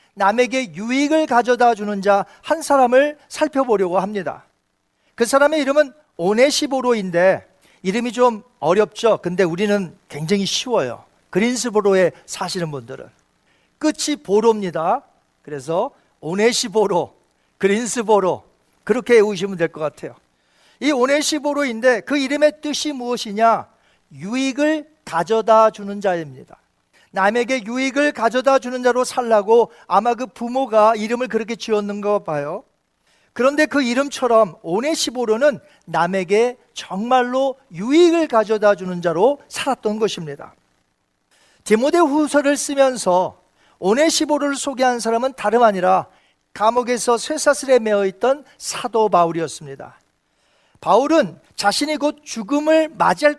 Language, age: Korean, 40-59